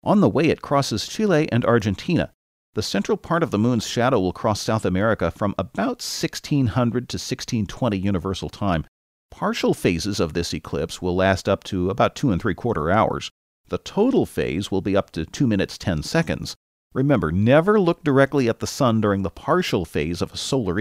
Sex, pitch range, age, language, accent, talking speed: male, 95-130 Hz, 40-59, English, American, 190 wpm